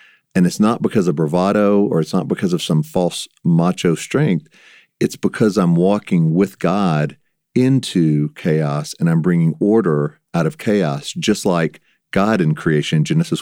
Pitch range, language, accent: 80-110 Hz, English, American